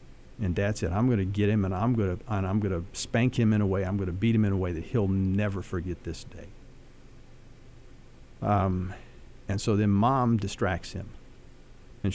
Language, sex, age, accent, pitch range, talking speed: English, male, 50-69, American, 95-115 Hz, 195 wpm